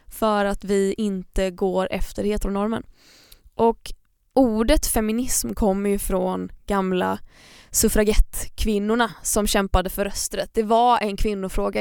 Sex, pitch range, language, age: female, 200-235 Hz, Swedish, 20-39